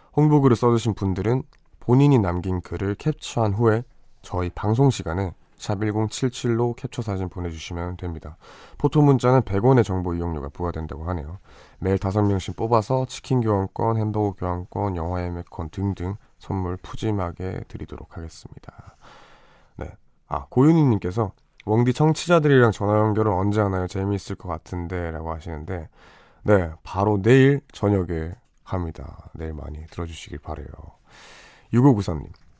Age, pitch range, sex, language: 20-39, 85-115 Hz, male, Korean